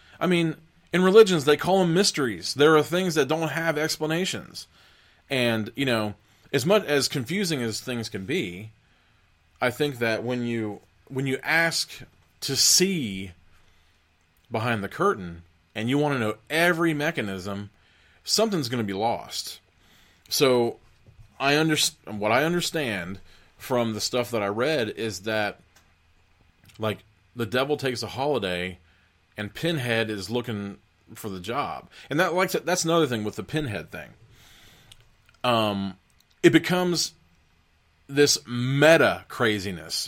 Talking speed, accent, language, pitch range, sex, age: 140 wpm, American, English, 95-150 Hz, male, 30-49